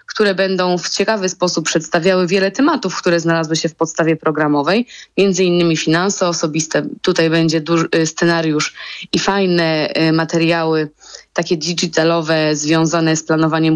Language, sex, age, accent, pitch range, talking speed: Polish, female, 20-39, native, 165-205 Hz, 125 wpm